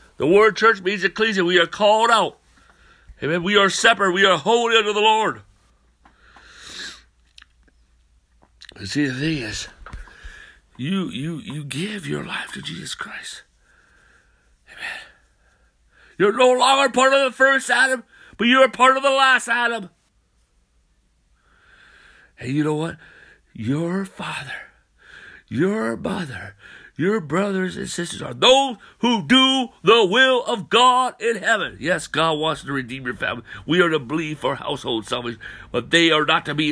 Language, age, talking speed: English, 60-79, 145 wpm